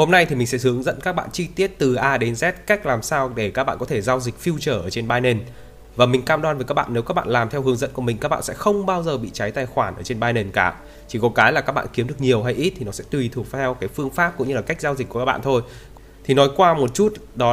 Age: 20-39